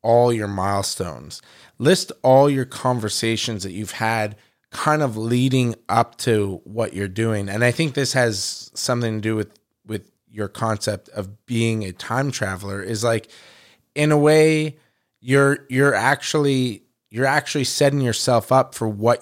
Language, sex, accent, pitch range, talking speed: English, male, American, 110-130 Hz, 155 wpm